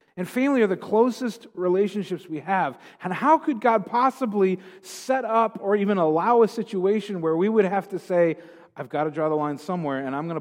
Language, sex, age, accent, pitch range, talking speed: English, male, 40-59, American, 125-185 Hz, 210 wpm